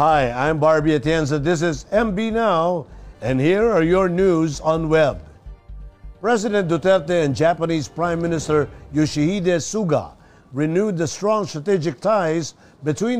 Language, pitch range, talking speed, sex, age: English, 150-200 Hz, 130 wpm, male, 50-69